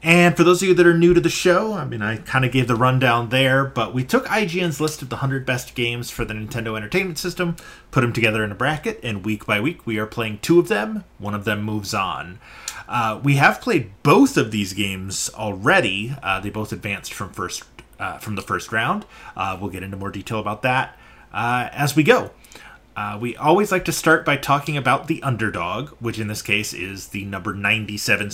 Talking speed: 225 wpm